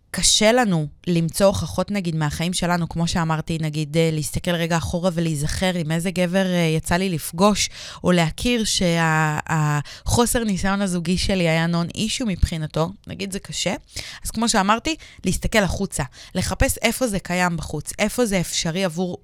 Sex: female